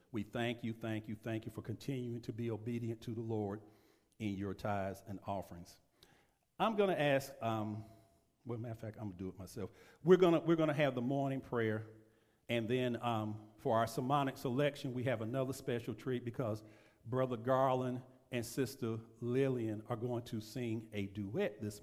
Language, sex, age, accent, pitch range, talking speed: English, male, 50-69, American, 110-130 Hz, 190 wpm